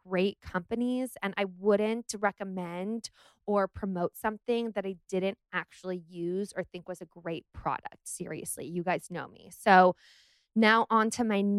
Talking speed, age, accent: 155 wpm, 20-39, American